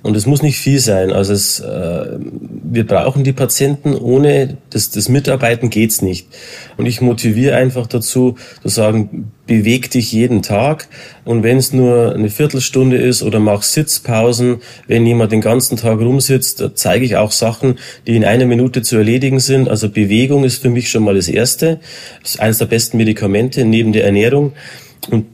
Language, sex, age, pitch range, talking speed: German, male, 30-49, 110-130 Hz, 180 wpm